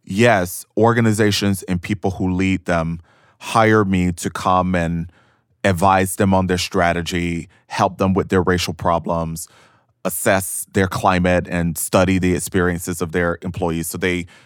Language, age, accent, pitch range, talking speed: English, 20-39, American, 95-120 Hz, 145 wpm